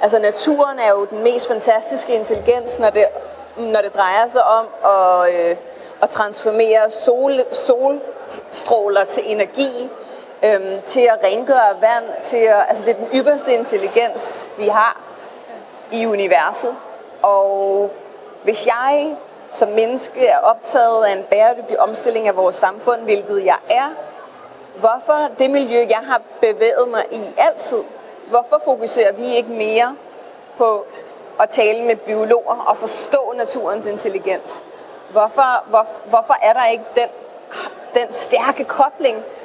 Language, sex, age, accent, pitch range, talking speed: Danish, female, 30-49, native, 210-260 Hz, 125 wpm